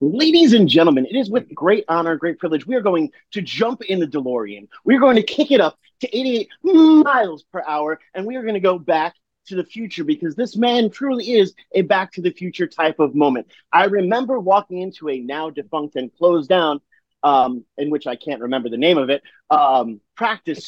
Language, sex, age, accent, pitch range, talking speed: English, male, 30-49, American, 150-215 Hz, 220 wpm